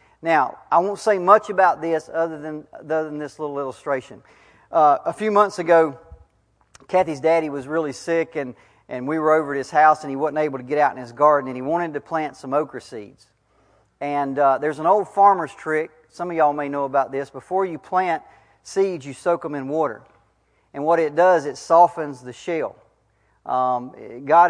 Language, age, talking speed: English, 40-59, 205 wpm